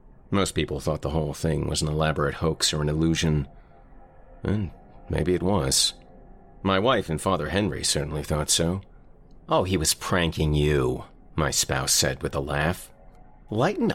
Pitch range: 75-95 Hz